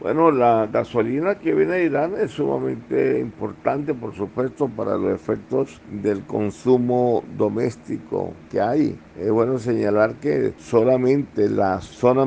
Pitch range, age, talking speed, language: 100-125 Hz, 50-69, 130 wpm, Spanish